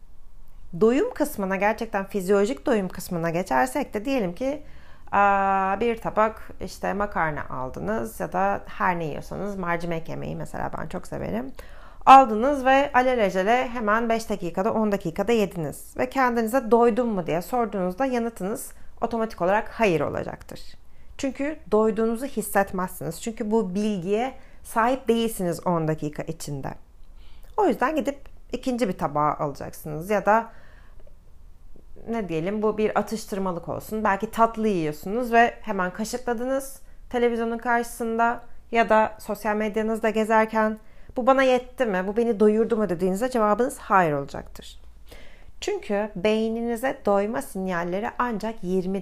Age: 30-49